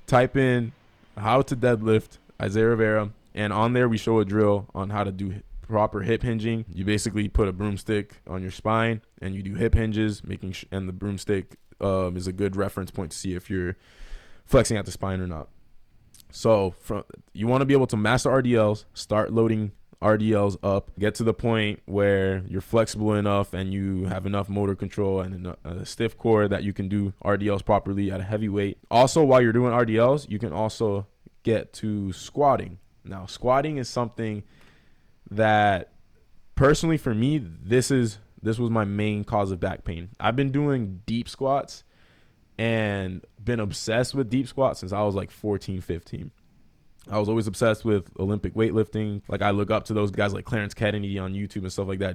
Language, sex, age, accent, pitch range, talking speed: English, male, 20-39, American, 100-115 Hz, 195 wpm